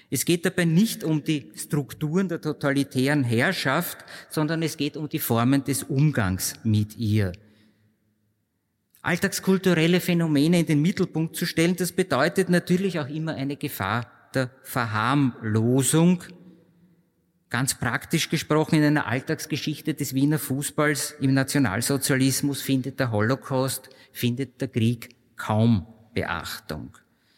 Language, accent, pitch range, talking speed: German, Austrian, 130-165 Hz, 120 wpm